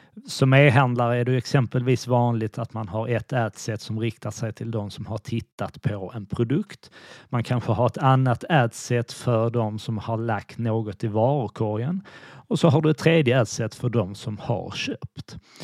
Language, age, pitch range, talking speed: Swedish, 30-49, 115-135 Hz, 185 wpm